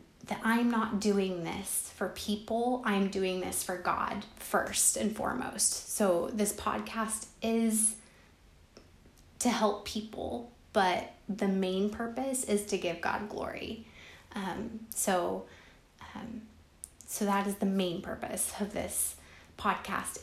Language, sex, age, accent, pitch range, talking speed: English, female, 20-39, American, 190-220 Hz, 130 wpm